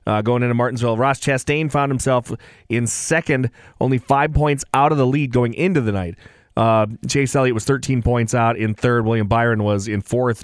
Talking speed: 200 wpm